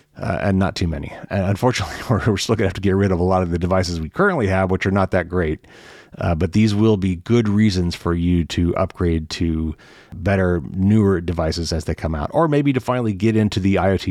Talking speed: 235 wpm